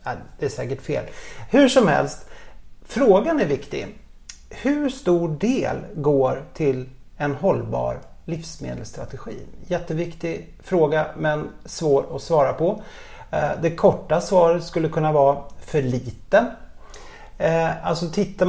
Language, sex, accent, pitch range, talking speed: Swedish, male, native, 130-175 Hz, 110 wpm